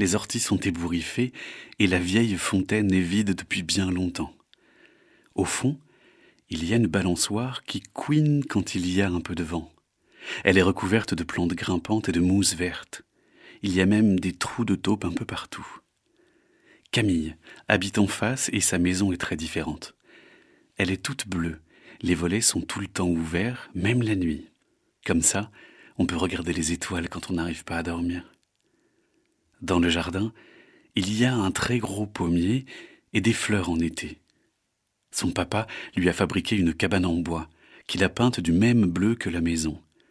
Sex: male